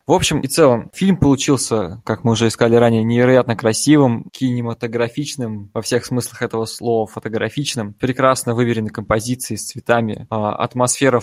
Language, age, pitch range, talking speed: Russian, 20-39, 110-125 Hz, 140 wpm